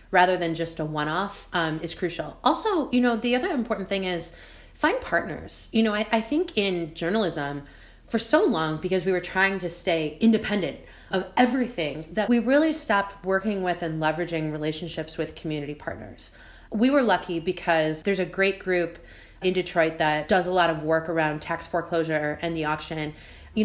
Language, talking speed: English, 180 wpm